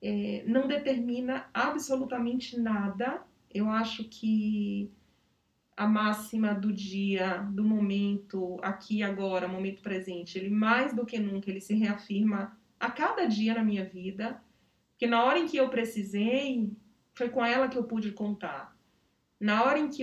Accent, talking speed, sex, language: Brazilian, 150 wpm, female, Portuguese